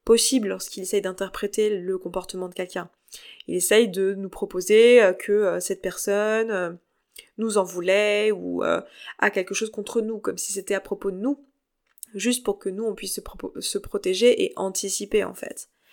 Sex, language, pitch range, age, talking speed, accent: female, French, 185-215 Hz, 20-39, 175 wpm, French